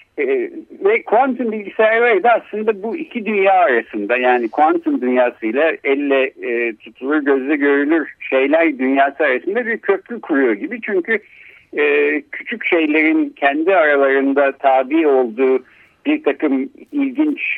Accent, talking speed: native, 125 wpm